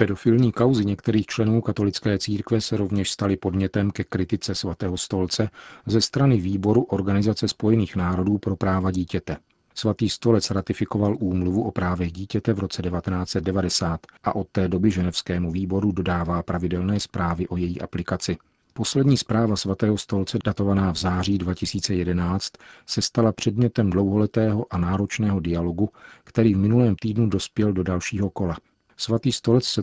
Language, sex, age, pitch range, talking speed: Czech, male, 40-59, 90-110 Hz, 145 wpm